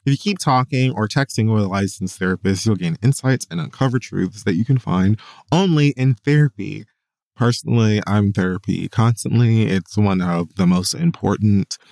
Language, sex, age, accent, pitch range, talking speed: English, male, 20-39, American, 100-130 Hz, 165 wpm